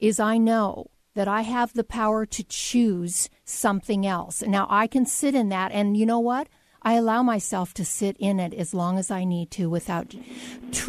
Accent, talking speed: American, 210 wpm